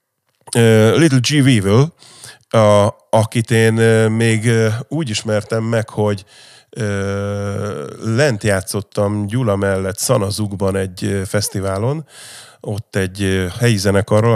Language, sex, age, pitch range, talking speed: Hungarian, male, 30-49, 100-130 Hz, 100 wpm